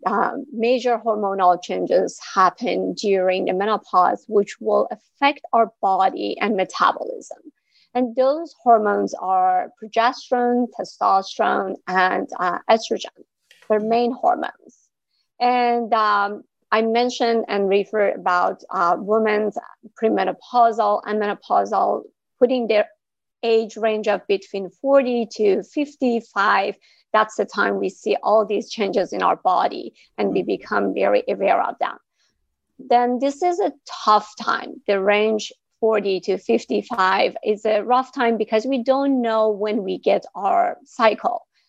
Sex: female